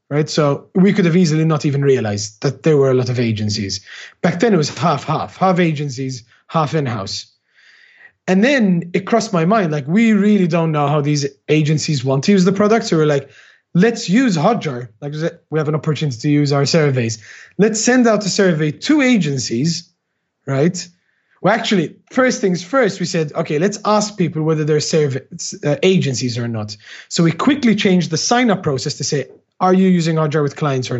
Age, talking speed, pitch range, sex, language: 30-49, 200 wpm, 145-195 Hz, male, English